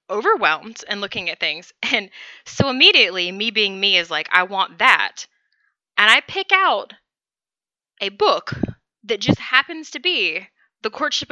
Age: 20-39